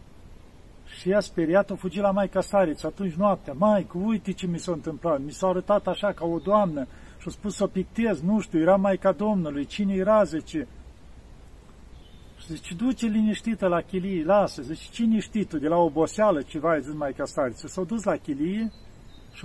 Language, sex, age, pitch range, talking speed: Romanian, male, 50-69, 155-200 Hz, 170 wpm